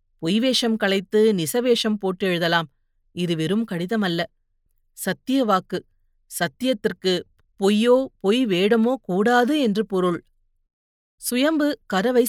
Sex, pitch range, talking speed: female, 180-225 Hz, 90 wpm